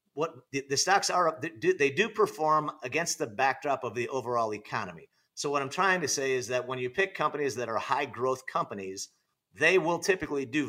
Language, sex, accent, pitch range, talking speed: English, male, American, 130-160 Hz, 215 wpm